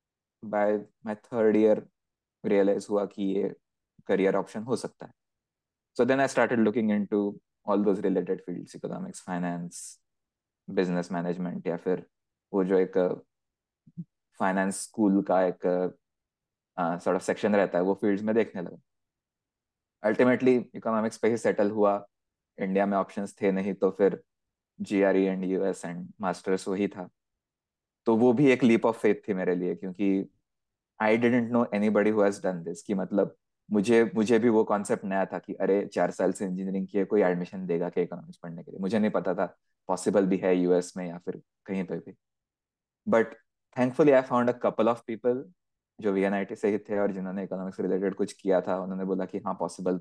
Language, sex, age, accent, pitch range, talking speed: Hindi, male, 20-39, native, 95-105 Hz, 160 wpm